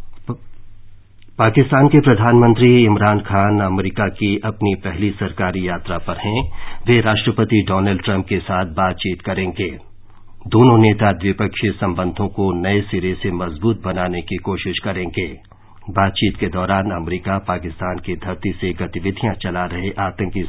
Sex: male